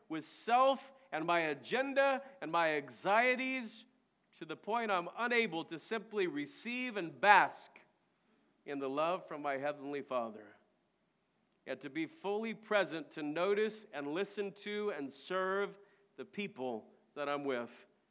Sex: male